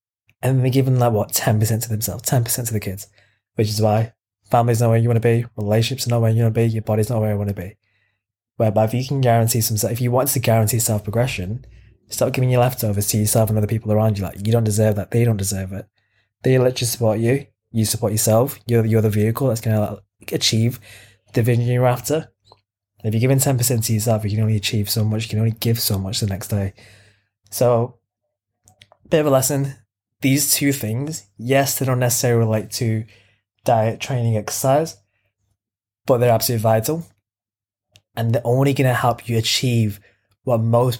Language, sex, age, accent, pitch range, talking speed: English, male, 20-39, British, 105-125 Hz, 210 wpm